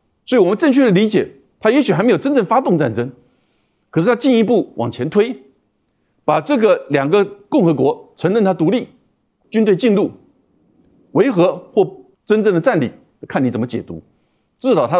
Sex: male